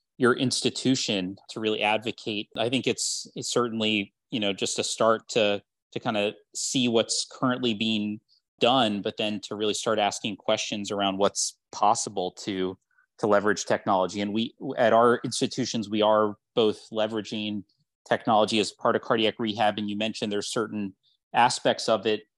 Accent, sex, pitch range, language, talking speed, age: American, male, 105-125 Hz, English, 165 wpm, 30-49